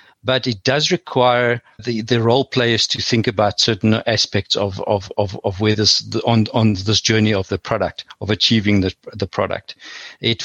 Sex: male